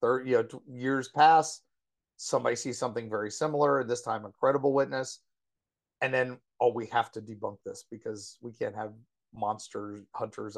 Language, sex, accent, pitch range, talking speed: English, male, American, 110-140 Hz, 160 wpm